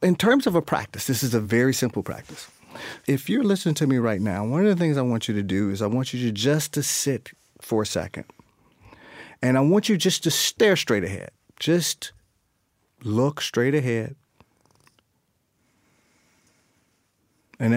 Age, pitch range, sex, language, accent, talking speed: 40-59, 105-140 Hz, male, English, American, 175 wpm